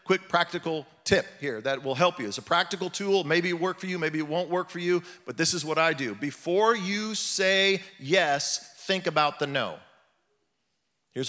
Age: 40-59